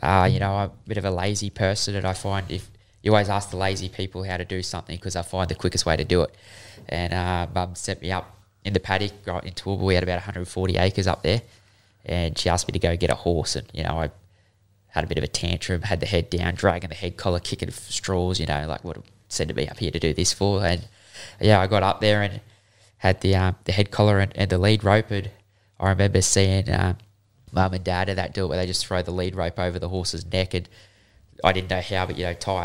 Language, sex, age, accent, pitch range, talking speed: English, male, 20-39, Australian, 90-100 Hz, 255 wpm